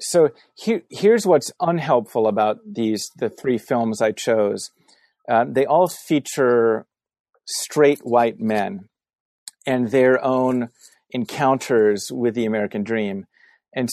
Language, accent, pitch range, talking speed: English, American, 110-135 Hz, 115 wpm